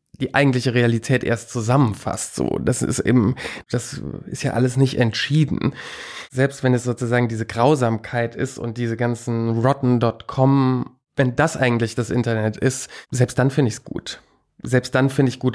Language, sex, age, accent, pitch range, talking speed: German, male, 20-39, German, 115-130 Hz, 165 wpm